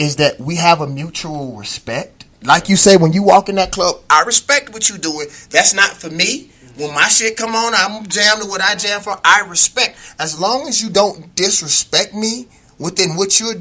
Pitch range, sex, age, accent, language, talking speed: 135-210 Hz, male, 30-49, American, English, 210 wpm